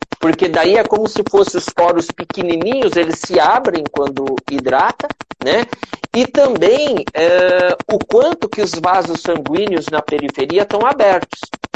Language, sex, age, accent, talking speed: Portuguese, male, 50-69, Brazilian, 140 wpm